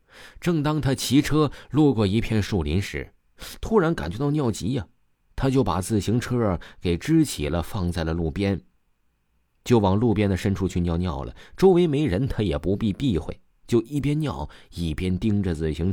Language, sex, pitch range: Chinese, male, 80-130 Hz